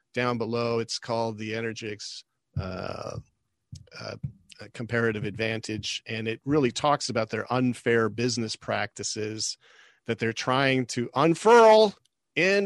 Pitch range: 110-130 Hz